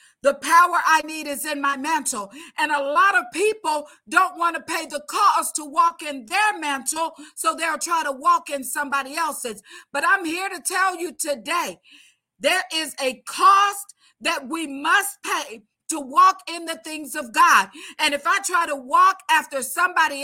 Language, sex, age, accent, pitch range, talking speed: English, female, 40-59, American, 285-360 Hz, 185 wpm